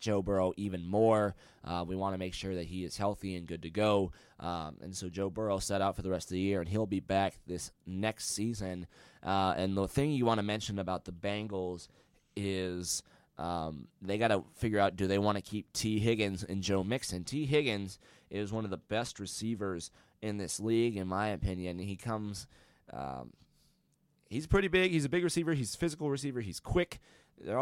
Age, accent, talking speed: 20-39, American, 210 wpm